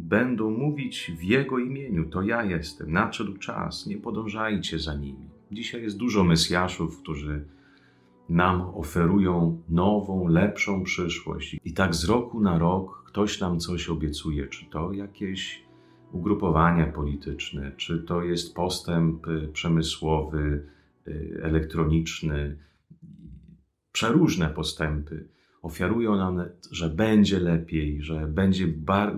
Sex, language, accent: male, Italian, Polish